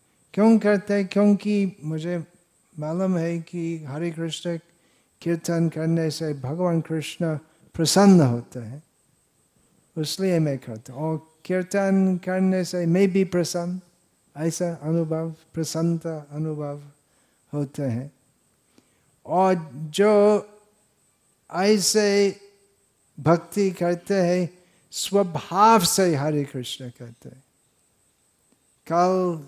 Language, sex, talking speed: Hindi, male, 95 wpm